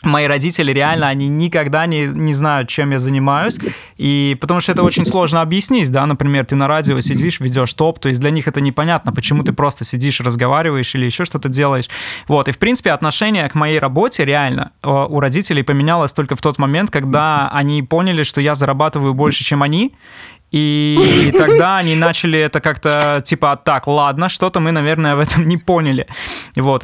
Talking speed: 190 wpm